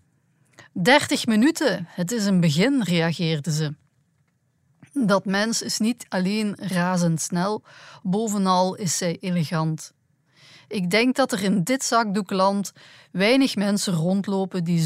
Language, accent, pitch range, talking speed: Dutch, Dutch, 160-225 Hz, 115 wpm